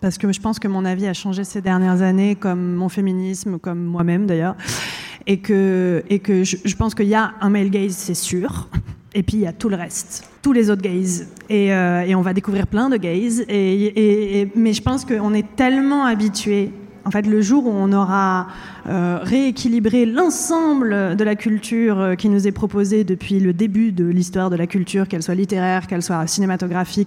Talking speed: 210 wpm